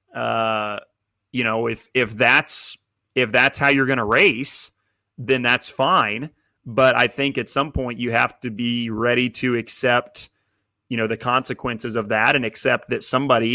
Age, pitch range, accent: 30-49, 105-125 Hz, American